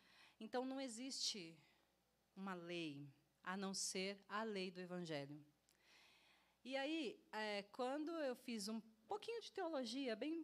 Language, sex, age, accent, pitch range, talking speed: Portuguese, female, 30-49, Brazilian, 185-260 Hz, 140 wpm